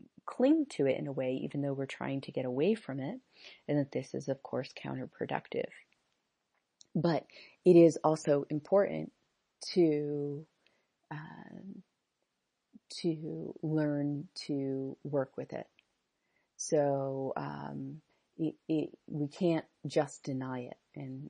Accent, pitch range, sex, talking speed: American, 135-165 Hz, female, 125 wpm